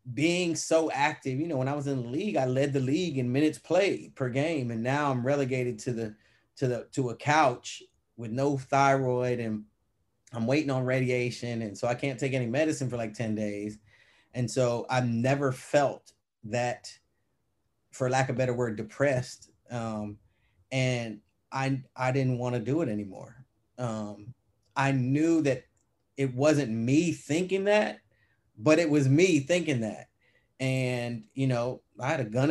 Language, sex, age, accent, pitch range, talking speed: English, male, 30-49, American, 110-135 Hz, 175 wpm